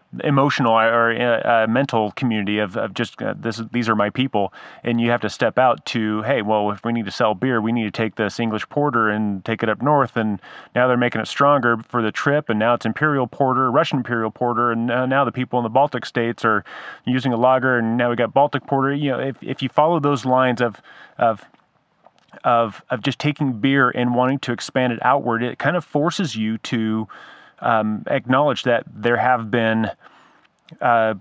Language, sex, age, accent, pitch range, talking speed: English, male, 30-49, American, 115-135 Hz, 215 wpm